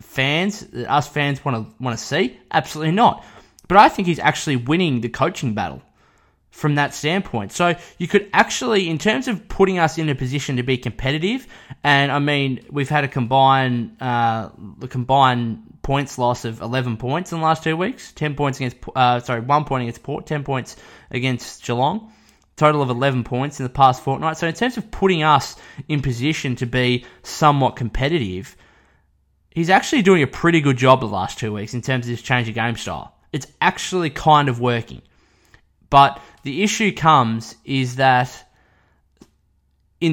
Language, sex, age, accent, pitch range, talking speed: English, male, 20-39, Australian, 120-150 Hz, 180 wpm